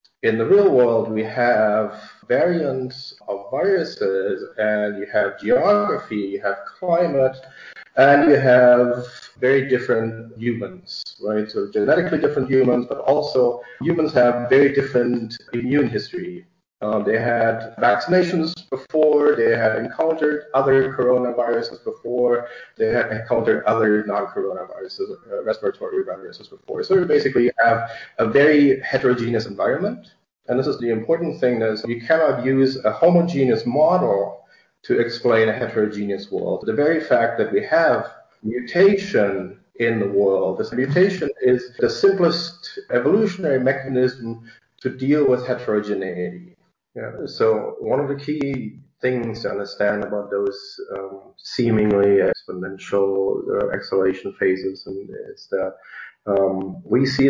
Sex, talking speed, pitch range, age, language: male, 130 wpm, 110-170 Hz, 30-49, English